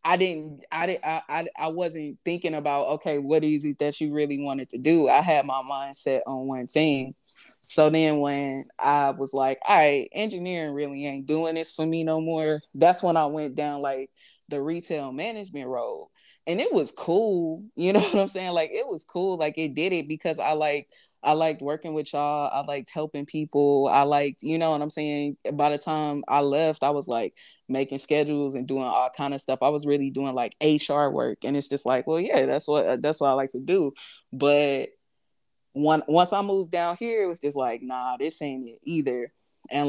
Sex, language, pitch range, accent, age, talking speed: female, English, 135-155 Hz, American, 20-39, 215 wpm